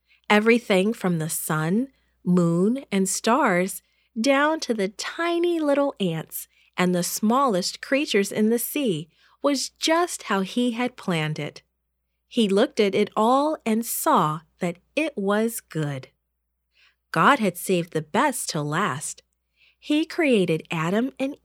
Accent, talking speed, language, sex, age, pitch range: American, 135 wpm, English, female, 40-59, 165-255 Hz